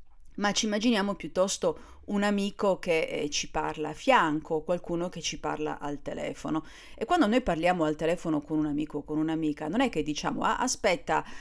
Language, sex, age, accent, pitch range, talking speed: Italian, female, 40-59, native, 155-220 Hz, 190 wpm